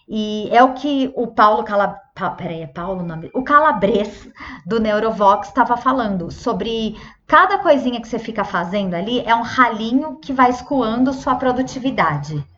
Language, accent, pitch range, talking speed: Portuguese, Brazilian, 200-265 Hz, 130 wpm